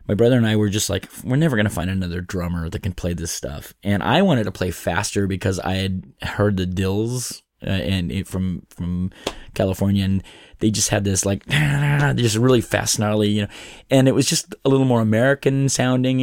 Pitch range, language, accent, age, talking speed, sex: 100-120 Hz, English, American, 20-39, 220 wpm, male